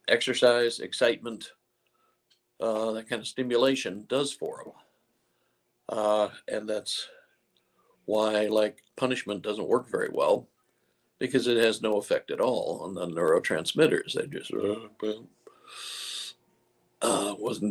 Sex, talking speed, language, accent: male, 115 wpm, English, American